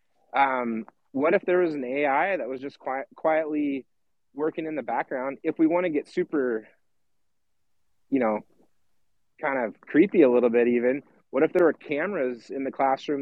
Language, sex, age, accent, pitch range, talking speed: English, male, 30-49, American, 120-145 Hz, 170 wpm